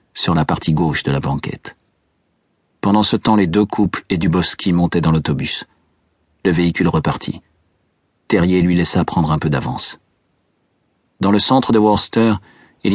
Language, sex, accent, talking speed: French, male, French, 160 wpm